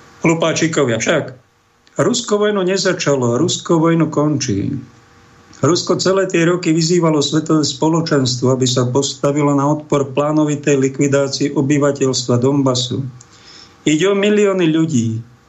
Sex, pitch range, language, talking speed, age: male, 130-160 Hz, Slovak, 110 wpm, 50-69